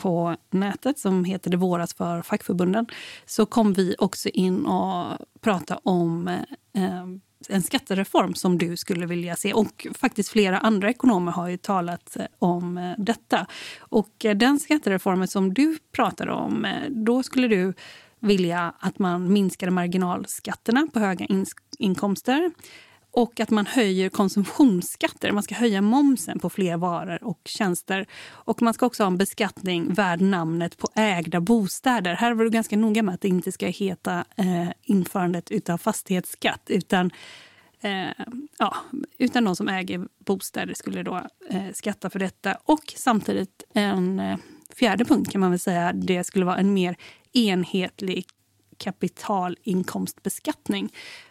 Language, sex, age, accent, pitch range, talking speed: Swedish, female, 30-49, native, 180-225 Hz, 135 wpm